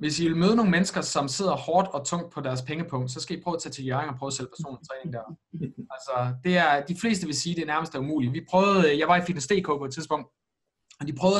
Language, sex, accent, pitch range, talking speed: Danish, male, native, 140-185 Hz, 285 wpm